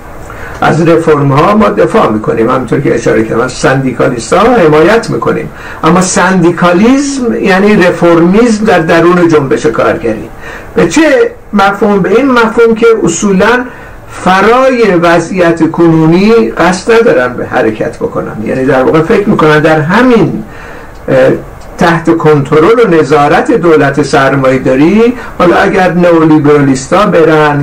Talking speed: 120 wpm